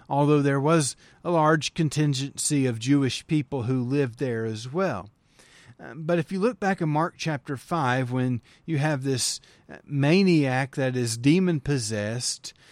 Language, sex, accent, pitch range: English, male, American, 130-165 Hz